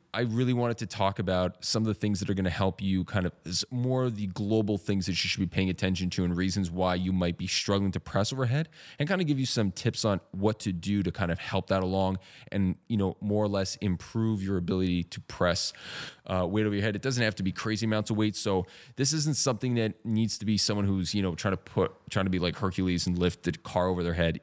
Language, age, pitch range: English, 20-39, 95-110 Hz